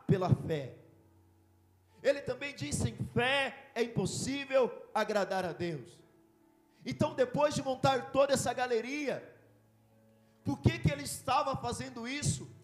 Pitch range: 185-290 Hz